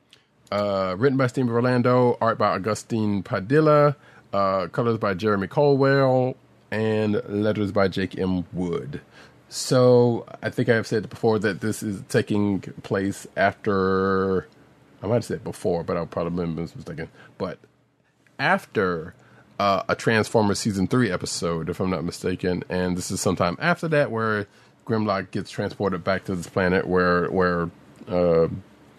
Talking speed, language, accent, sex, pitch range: 145 wpm, English, American, male, 90-115 Hz